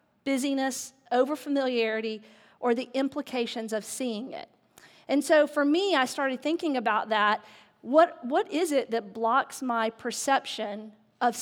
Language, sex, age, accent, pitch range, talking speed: English, female, 40-59, American, 235-280 Hz, 135 wpm